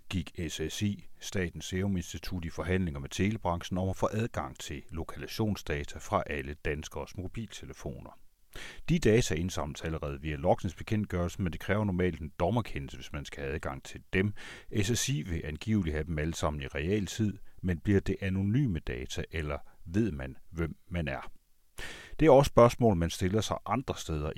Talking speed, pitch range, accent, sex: 165 wpm, 80-100 Hz, native, male